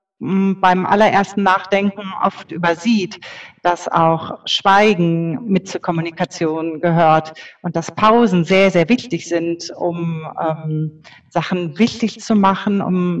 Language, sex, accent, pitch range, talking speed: German, female, German, 180-220 Hz, 120 wpm